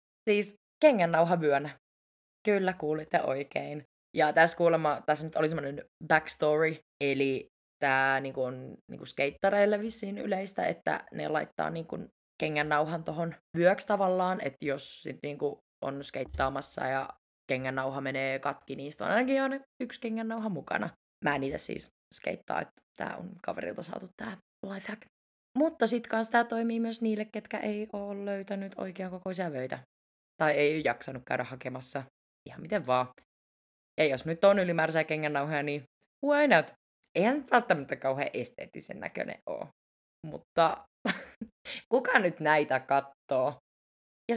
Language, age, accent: Finnish, 20-39, native